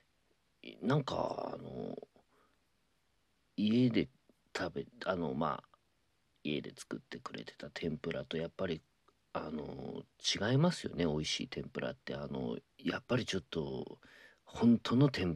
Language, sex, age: Japanese, male, 40-59